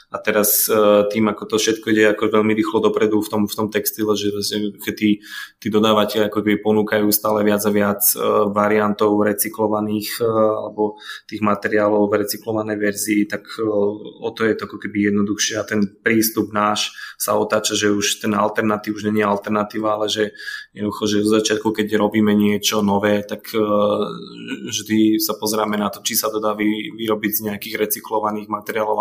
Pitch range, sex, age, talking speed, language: 105-110 Hz, male, 20-39, 170 wpm, Slovak